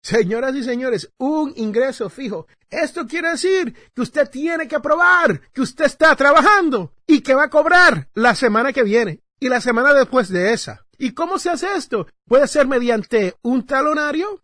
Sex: male